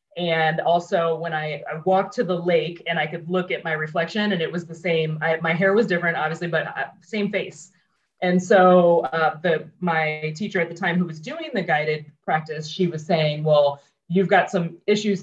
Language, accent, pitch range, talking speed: English, American, 160-185 Hz, 210 wpm